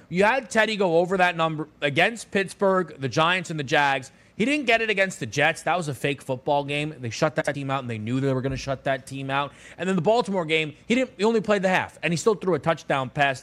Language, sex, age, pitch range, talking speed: English, male, 30-49, 135-180 Hz, 275 wpm